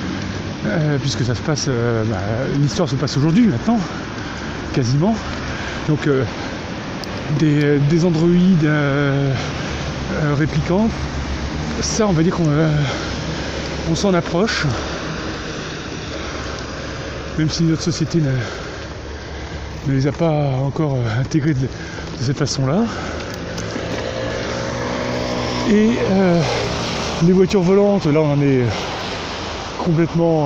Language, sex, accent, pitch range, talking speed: French, male, French, 120-175 Hz, 115 wpm